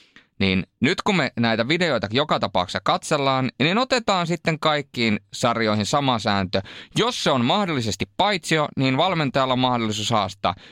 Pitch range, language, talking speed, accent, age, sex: 110-145 Hz, Finnish, 145 wpm, native, 20-39, male